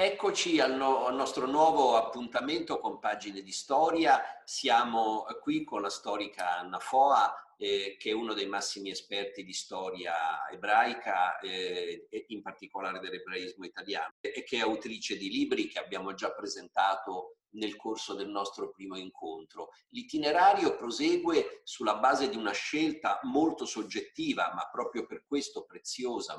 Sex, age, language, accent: male, 50-69, Italian, native